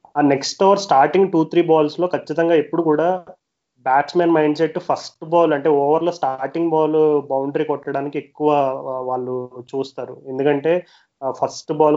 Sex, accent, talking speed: male, native, 140 wpm